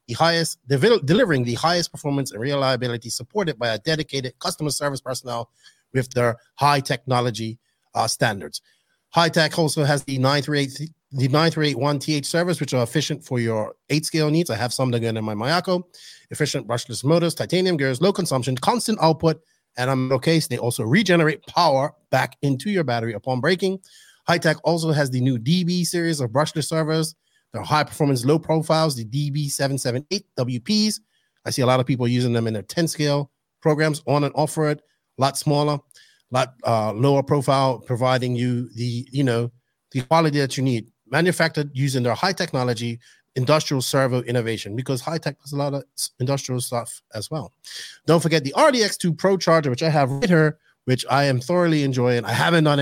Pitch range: 125-160 Hz